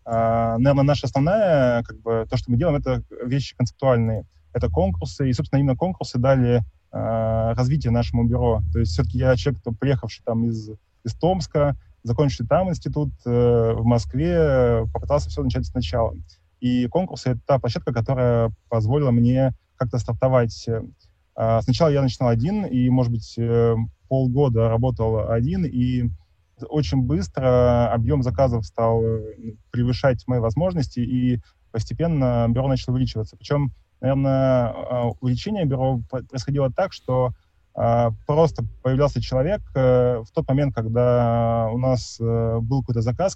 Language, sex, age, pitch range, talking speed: Russian, male, 20-39, 115-135 Hz, 130 wpm